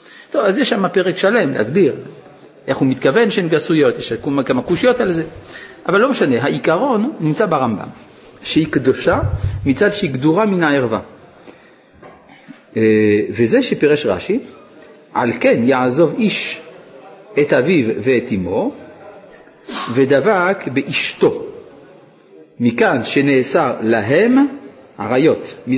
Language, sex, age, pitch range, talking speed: Hebrew, male, 50-69, 130-195 Hz, 110 wpm